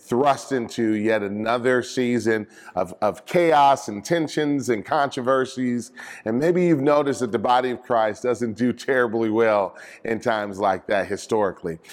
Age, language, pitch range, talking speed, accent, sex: 30-49, English, 105-130 Hz, 150 wpm, American, male